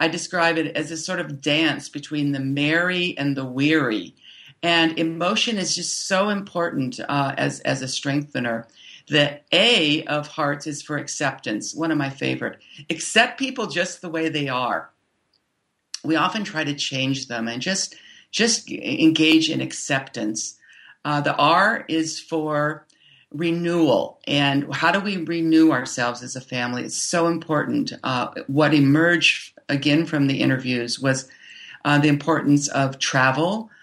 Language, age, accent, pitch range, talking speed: English, 50-69, American, 135-165 Hz, 155 wpm